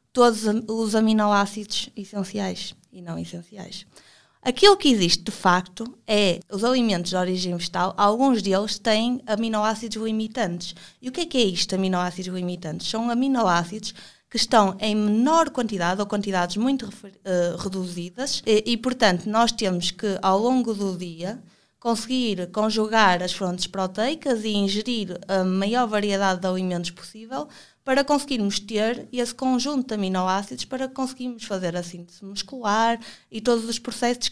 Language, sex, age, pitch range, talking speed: Portuguese, female, 20-39, 185-230 Hz, 150 wpm